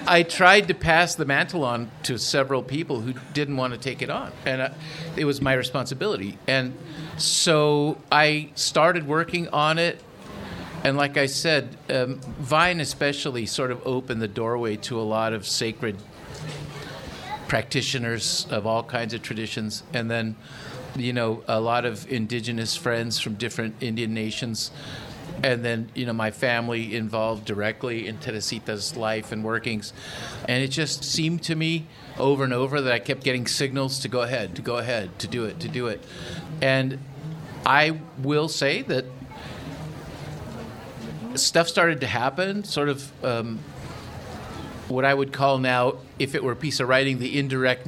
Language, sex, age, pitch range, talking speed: English, male, 50-69, 120-145 Hz, 165 wpm